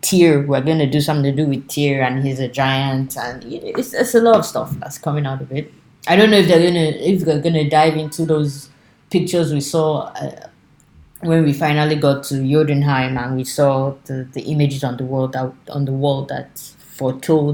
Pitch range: 135-160 Hz